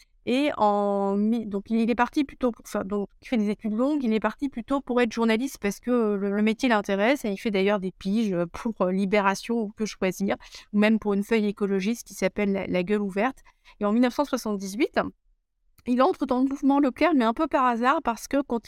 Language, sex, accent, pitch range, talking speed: French, female, French, 205-250 Hz, 220 wpm